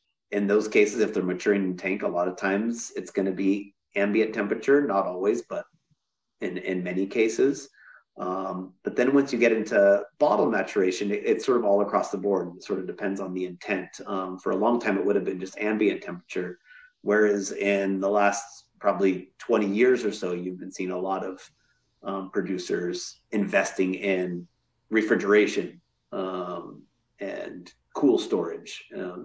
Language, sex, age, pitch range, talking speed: English, male, 30-49, 95-115 Hz, 170 wpm